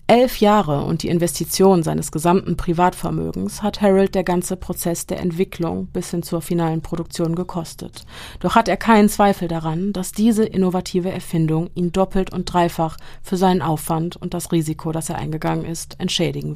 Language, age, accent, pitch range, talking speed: German, 30-49, German, 165-200 Hz, 165 wpm